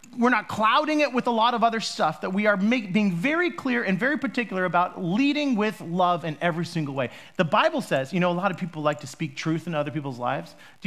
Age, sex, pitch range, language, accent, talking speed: 40-59, male, 130-195 Hz, English, American, 250 wpm